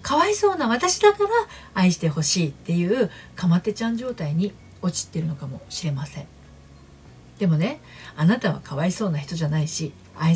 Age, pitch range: 40-59, 155-205 Hz